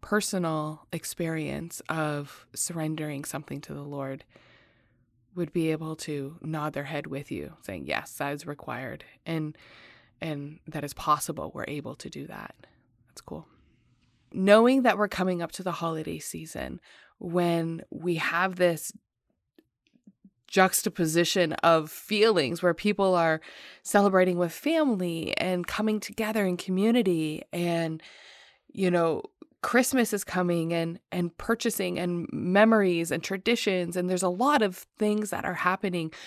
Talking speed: 135 wpm